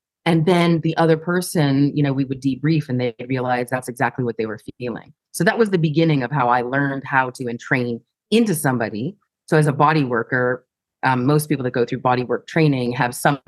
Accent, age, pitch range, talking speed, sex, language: American, 30-49, 140-170 Hz, 220 wpm, female, English